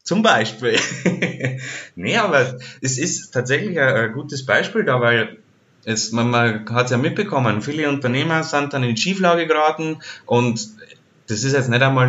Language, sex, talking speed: German, male, 160 wpm